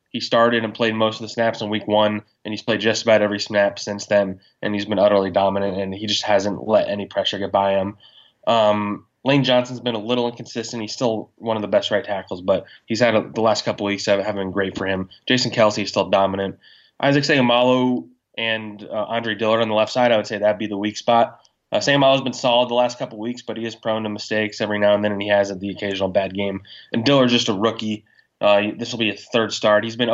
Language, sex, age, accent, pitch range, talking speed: English, male, 20-39, American, 100-115 Hz, 255 wpm